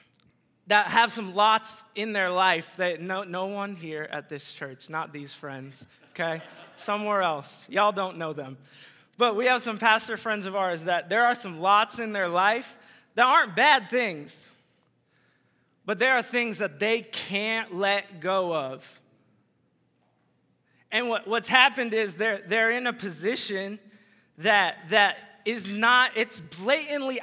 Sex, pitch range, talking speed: male, 200-240 Hz, 155 wpm